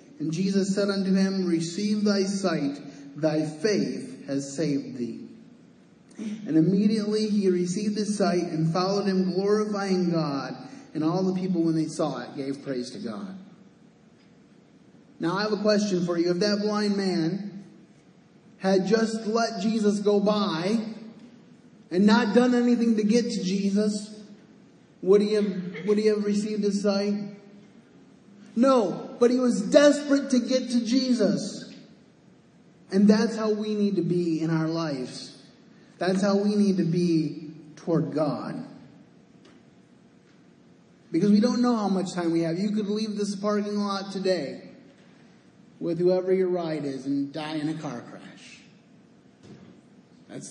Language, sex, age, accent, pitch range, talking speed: English, male, 30-49, American, 170-215 Hz, 150 wpm